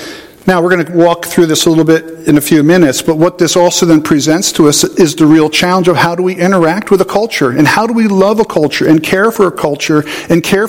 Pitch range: 160-190 Hz